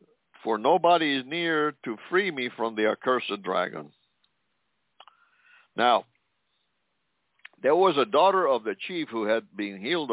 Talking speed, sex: 135 wpm, male